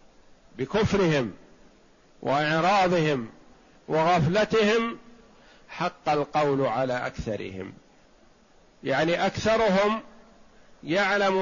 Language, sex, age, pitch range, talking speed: Arabic, male, 50-69, 155-210 Hz, 55 wpm